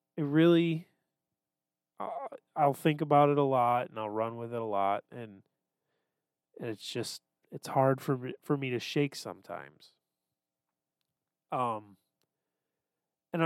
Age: 30-49